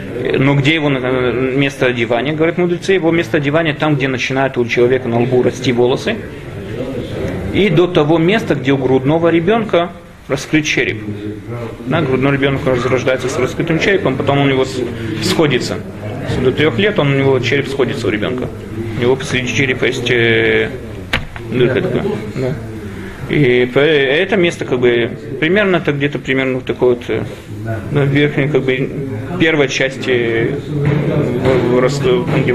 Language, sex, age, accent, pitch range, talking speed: Russian, male, 30-49, native, 120-145 Hz, 135 wpm